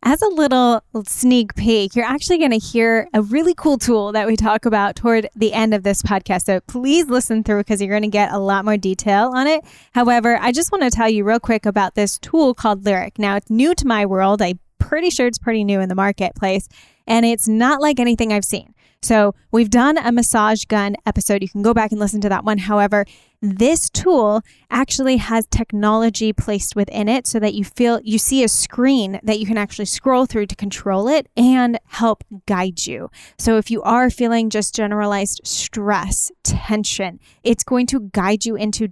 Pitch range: 205-245 Hz